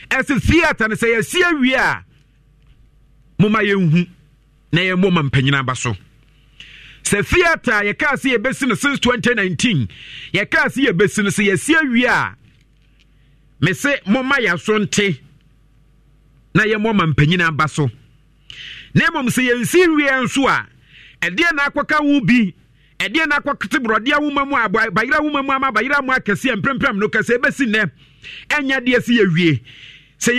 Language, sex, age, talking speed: English, male, 50-69, 145 wpm